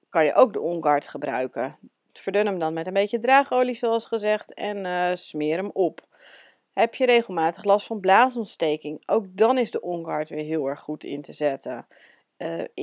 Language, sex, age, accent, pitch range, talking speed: Dutch, female, 40-59, Dutch, 185-235 Hz, 180 wpm